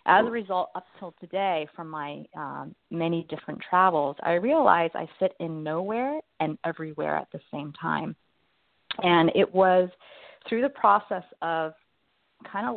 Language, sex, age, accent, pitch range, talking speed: English, female, 30-49, American, 150-185 Hz, 155 wpm